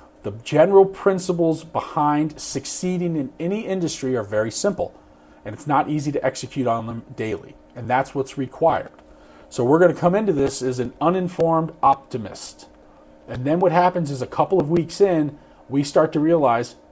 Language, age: English, 40-59